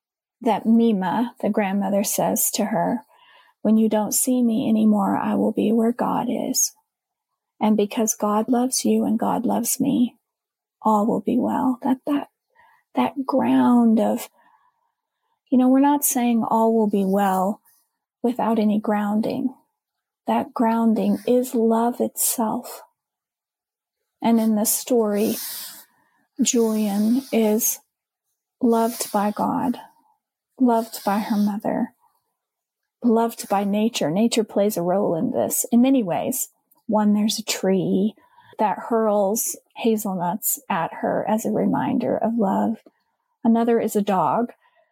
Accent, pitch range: American, 215-255 Hz